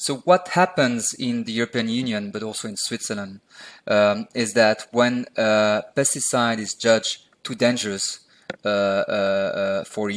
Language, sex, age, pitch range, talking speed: English, male, 30-49, 105-135 Hz, 150 wpm